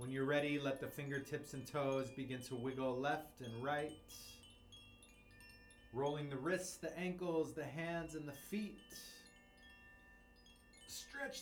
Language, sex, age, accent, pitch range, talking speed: English, male, 30-49, American, 165-205 Hz, 130 wpm